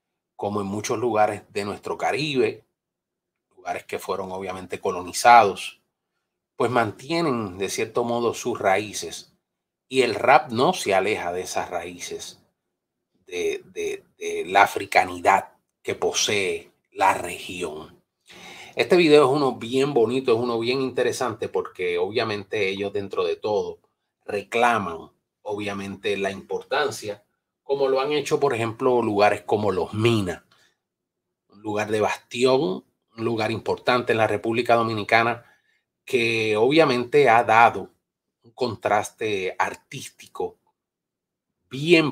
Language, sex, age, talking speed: Spanish, male, 30-49, 125 wpm